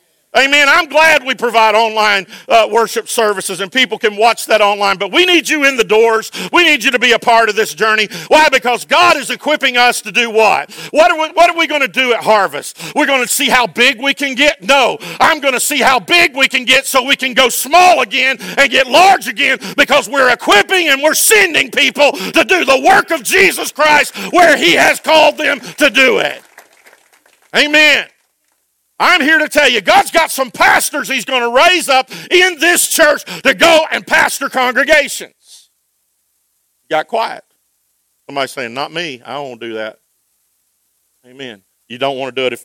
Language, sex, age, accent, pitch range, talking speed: English, male, 50-69, American, 215-300 Hz, 200 wpm